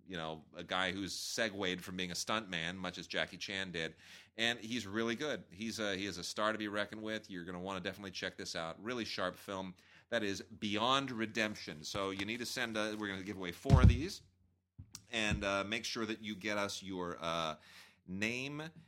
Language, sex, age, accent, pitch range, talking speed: English, male, 30-49, American, 90-110 Hz, 225 wpm